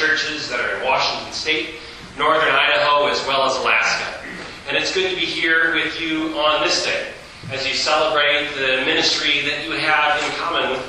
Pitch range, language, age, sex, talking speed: 130-150 Hz, English, 30-49, male, 185 wpm